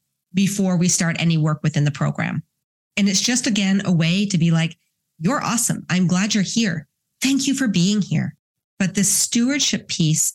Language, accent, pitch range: English, American, 160-195 Hz